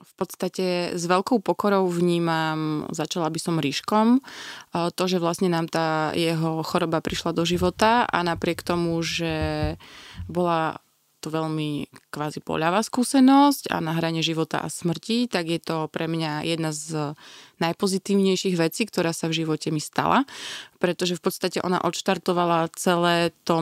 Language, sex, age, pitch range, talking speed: Slovak, female, 20-39, 160-185 Hz, 145 wpm